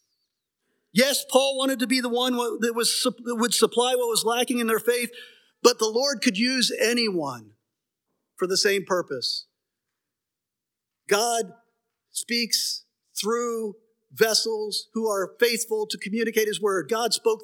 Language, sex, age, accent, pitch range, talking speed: English, male, 50-69, American, 195-235 Hz, 135 wpm